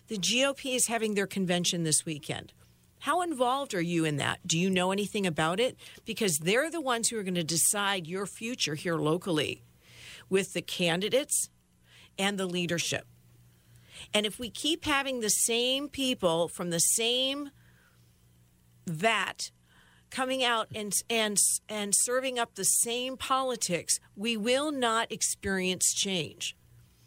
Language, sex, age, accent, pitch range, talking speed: English, female, 50-69, American, 170-235 Hz, 145 wpm